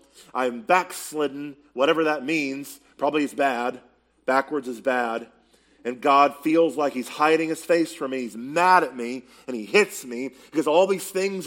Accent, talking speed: American, 175 wpm